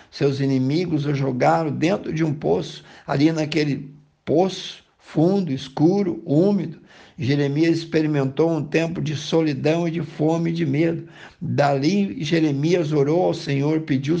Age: 60-79